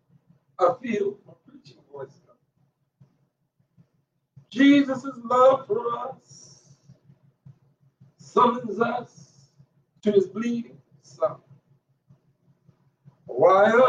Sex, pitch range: male, 145-240 Hz